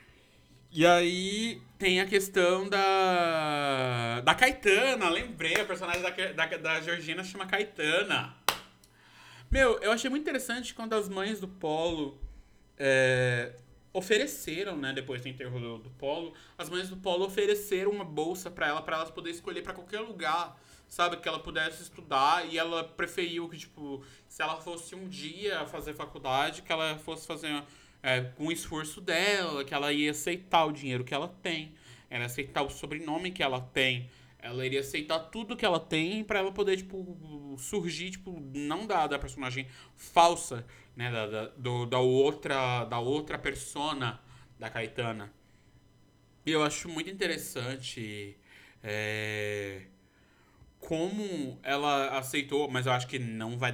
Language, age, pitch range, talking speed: Portuguese, 20-39, 125-180 Hz, 155 wpm